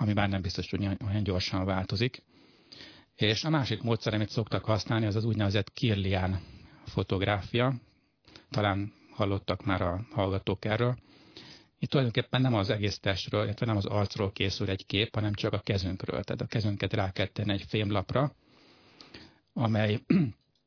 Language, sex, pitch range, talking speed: Hungarian, male, 95-115 Hz, 145 wpm